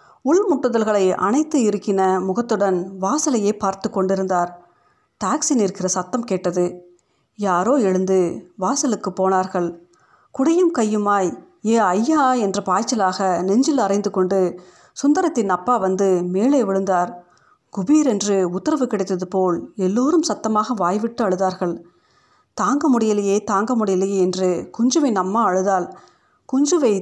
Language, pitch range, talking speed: Tamil, 190-245 Hz, 105 wpm